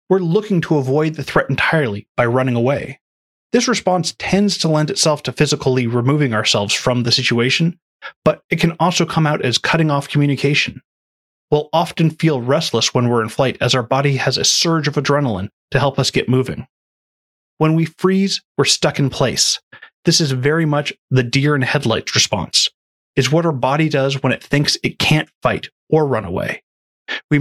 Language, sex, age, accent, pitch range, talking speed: English, male, 30-49, American, 130-170 Hz, 185 wpm